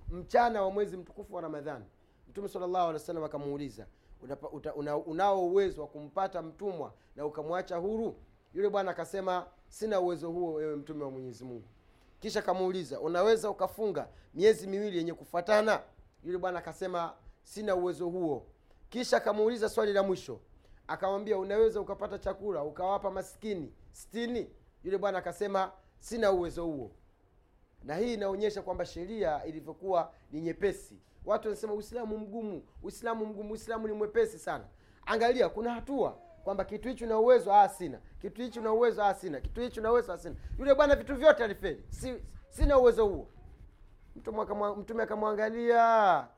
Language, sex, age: Swahili, male, 30-49